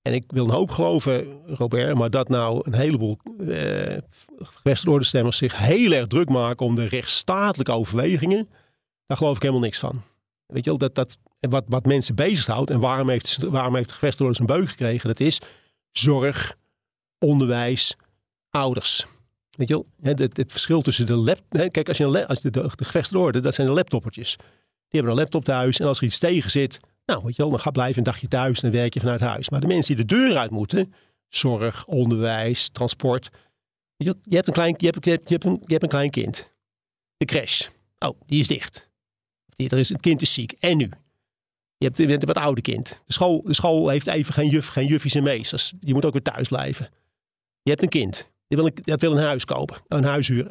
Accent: Dutch